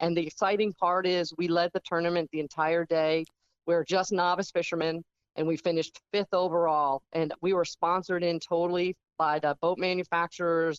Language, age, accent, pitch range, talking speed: English, 40-59, American, 155-175 Hz, 180 wpm